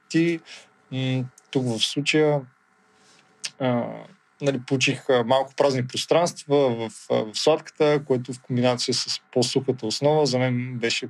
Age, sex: 20-39, male